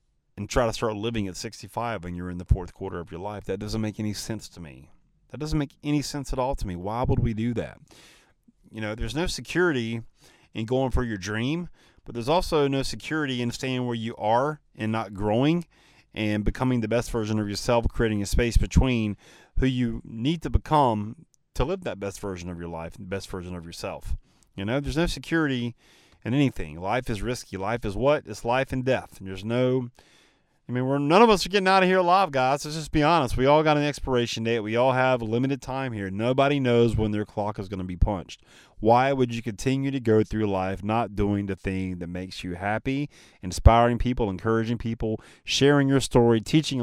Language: English